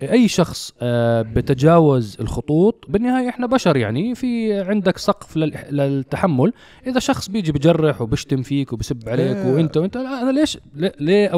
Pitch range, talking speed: 125-175 Hz, 130 wpm